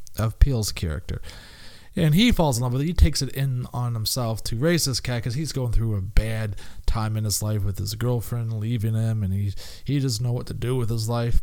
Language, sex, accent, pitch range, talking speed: English, male, American, 105-130 Hz, 240 wpm